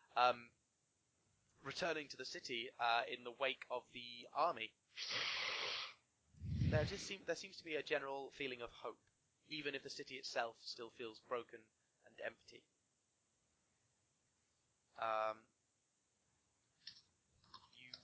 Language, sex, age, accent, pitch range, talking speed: English, male, 20-39, British, 120-140 Hz, 120 wpm